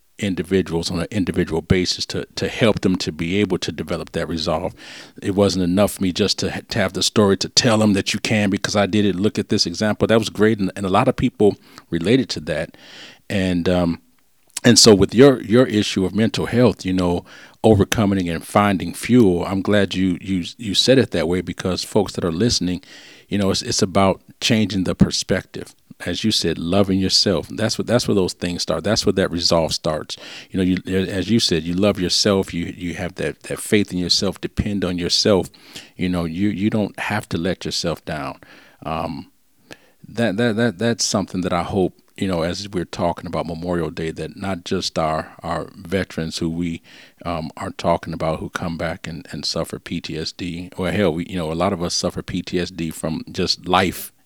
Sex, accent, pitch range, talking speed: male, American, 85-105 Hz, 210 wpm